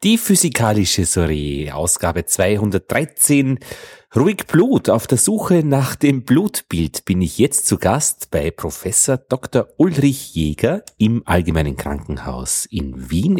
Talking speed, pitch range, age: 125 wpm, 105-145 Hz, 40-59